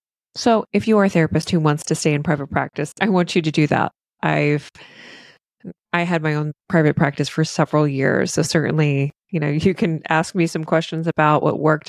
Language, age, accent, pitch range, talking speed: English, 20-39, American, 150-195 Hz, 210 wpm